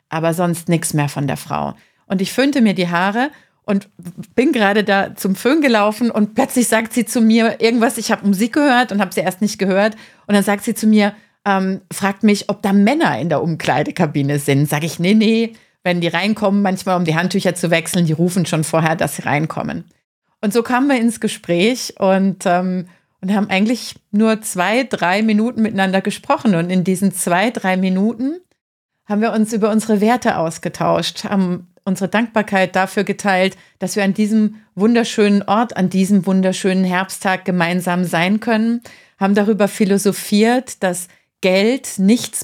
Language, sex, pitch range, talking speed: German, female, 185-225 Hz, 180 wpm